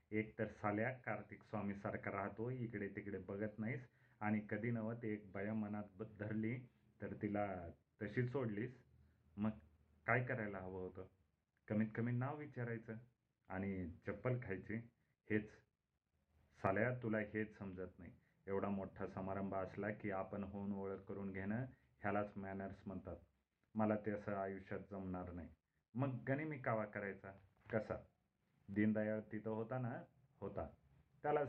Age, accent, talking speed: 30-49, native, 135 wpm